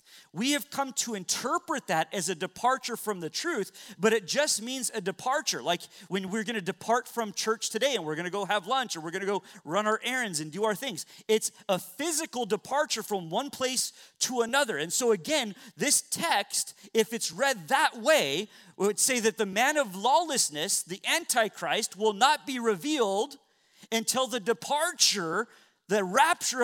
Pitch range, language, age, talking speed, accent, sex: 185-245 Hz, English, 40-59, 185 wpm, American, male